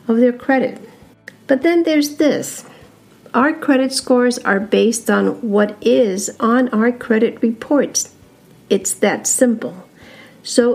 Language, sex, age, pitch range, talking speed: English, female, 50-69, 215-260 Hz, 130 wpm